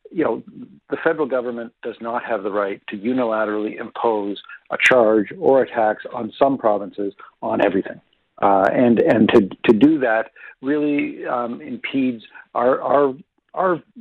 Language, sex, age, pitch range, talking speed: English, male, 50-69, 110-145 Hz, 155 wpm